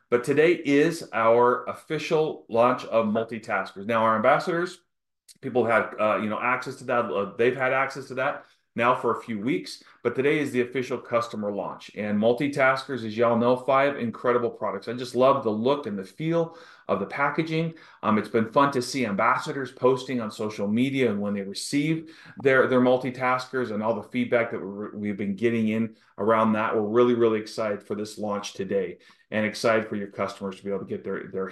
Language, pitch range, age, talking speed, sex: English, 105-130 Hz, 30-49, 200 wpm, male